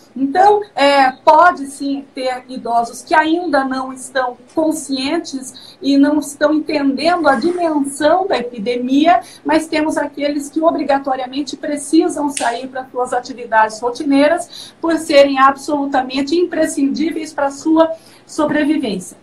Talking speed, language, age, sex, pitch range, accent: 115 wpm, Portuguese, 50-69, female, 260-320 Hz, Brazilian